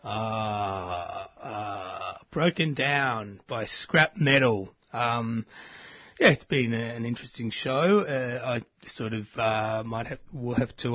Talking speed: 140 wpm